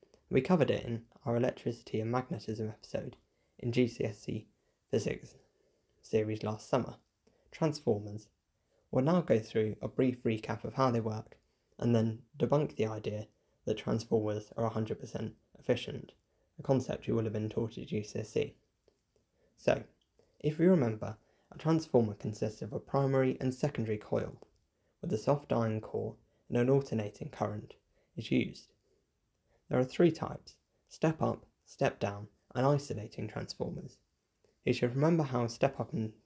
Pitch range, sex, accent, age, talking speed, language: 110-130 Hz, male, British, 10-29, 140 wpm, English